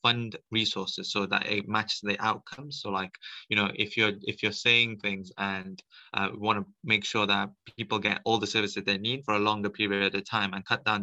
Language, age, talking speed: English, 20-39, 225 wpm